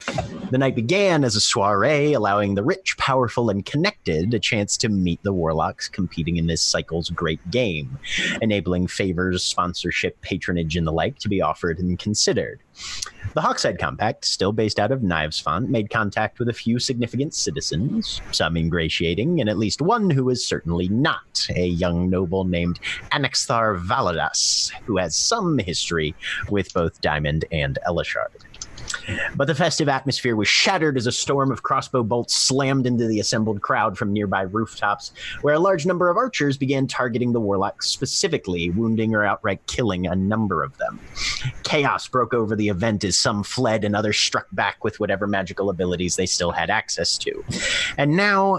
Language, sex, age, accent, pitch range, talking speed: English, male, 30-49, American, 95-130 Hz, 170 wpm